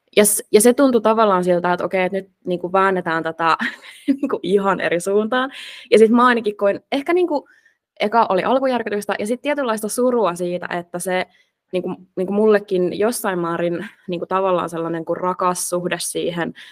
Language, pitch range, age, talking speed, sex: Finnish, 175-225 Hz, 20-39, 165 wpm, female